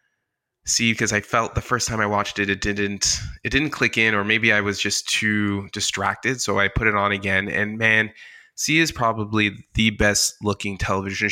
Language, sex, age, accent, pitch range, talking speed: English, male, 20-39, American, 100-115 Hz, 200 wpm